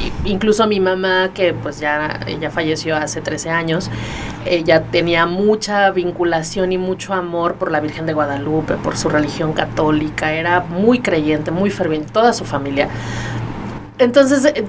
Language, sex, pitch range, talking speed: English, female, 160-205 Hz, 145 wpm